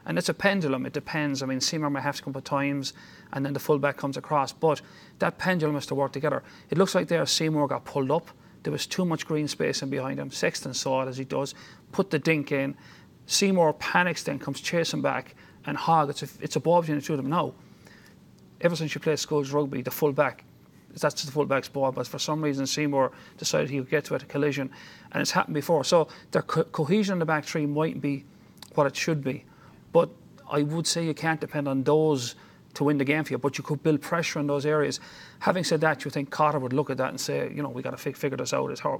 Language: English